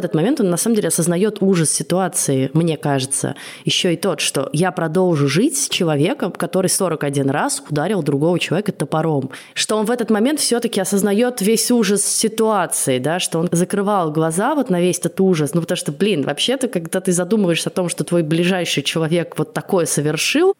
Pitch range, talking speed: 155-195 Hz, 185 wpm